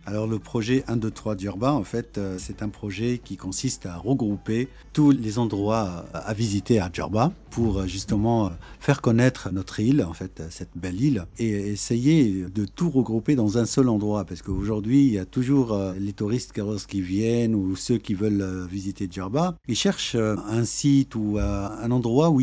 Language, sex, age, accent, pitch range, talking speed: French, male, 50-69, French, 100-125 Hz, 180 wpm